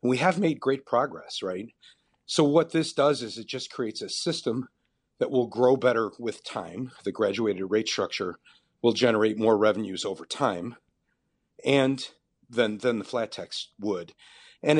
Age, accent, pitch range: 40-59, American, 110-135 Hz